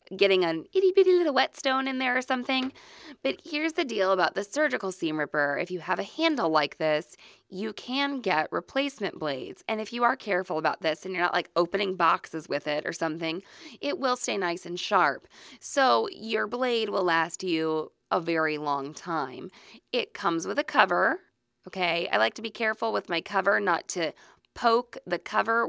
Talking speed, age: 195 wpm, 20-39